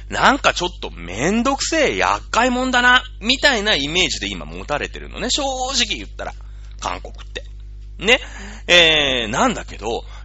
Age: 30-49